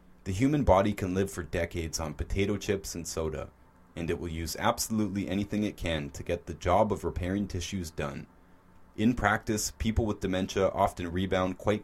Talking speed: 180 wpm